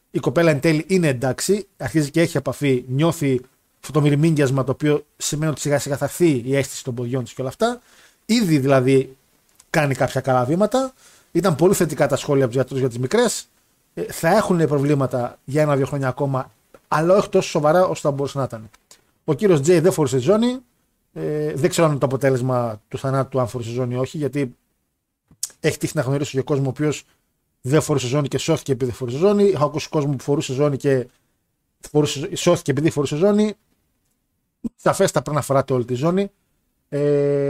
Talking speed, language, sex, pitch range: 185 wpm, Greek, male, 135-180 Hz